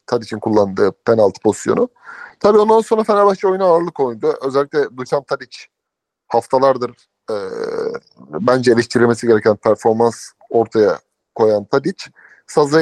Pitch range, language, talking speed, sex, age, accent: 120-190 Hz, Turkish, 110 wpm, male, 30-49, native